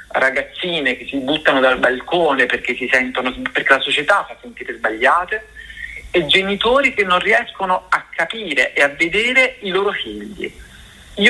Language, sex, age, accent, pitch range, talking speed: Italian, male, 50-69, native, 180-255 Hz, 155 wpm